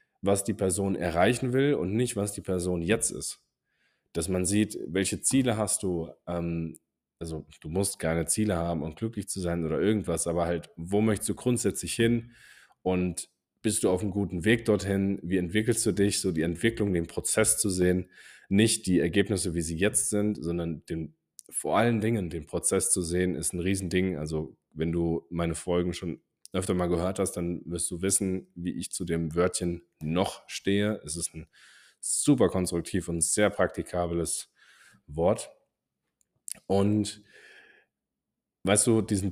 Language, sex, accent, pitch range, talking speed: German, male, German, 85-100 Hz, 170 wpm